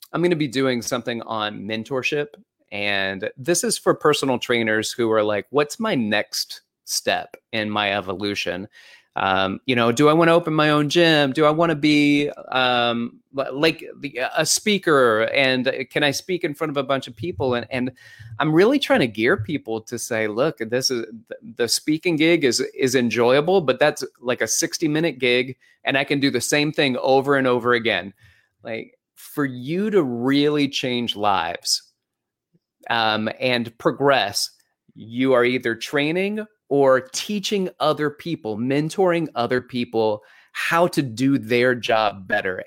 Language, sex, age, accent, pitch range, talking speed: English, male, 30-49, American, 115-155 Hz, 165 wpm